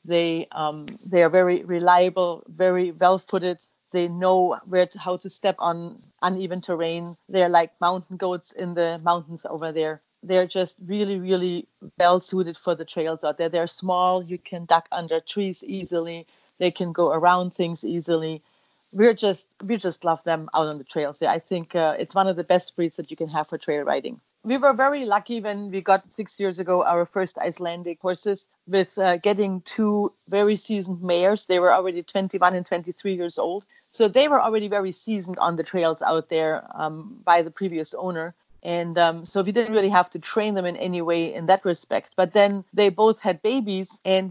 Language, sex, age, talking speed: English, female, 40-59, 200 wpm